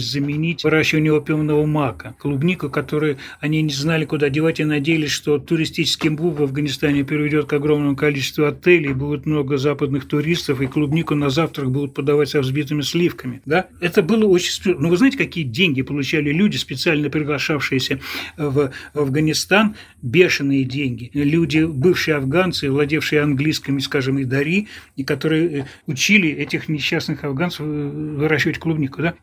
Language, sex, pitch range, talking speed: Russian, male, 145-175 Hz, 145 wpm